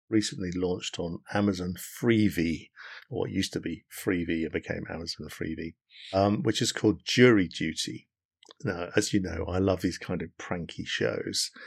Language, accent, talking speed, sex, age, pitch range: English, British, 160 wpm, male, 50-69, 90-110 Hz